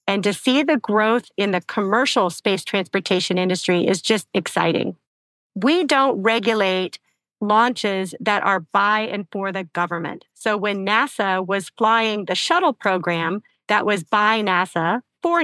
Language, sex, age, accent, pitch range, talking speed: English, female, 40-59, American, 190-235 Hz, 150 wpm